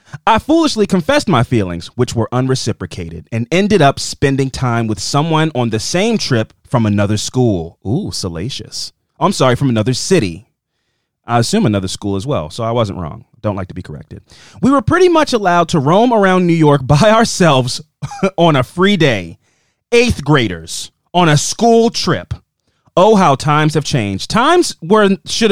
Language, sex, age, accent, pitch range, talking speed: English, male, 30-49, American, 120-185 Hz, 175 wpm